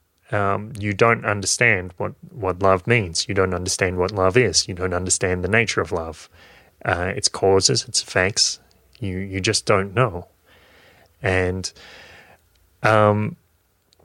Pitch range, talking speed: 90-110 Hz, 140 wpm